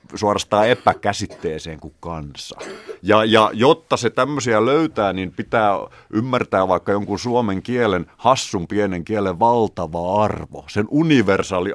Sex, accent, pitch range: male, native, 90-115 Hz